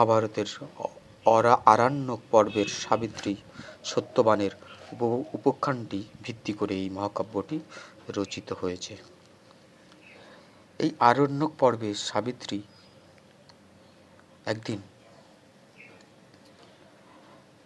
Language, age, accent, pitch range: Bengali, 50-69, native, 100-125 Hz